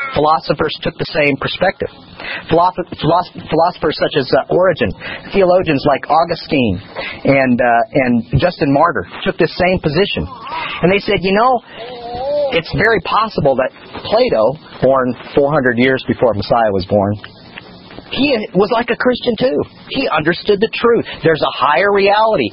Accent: American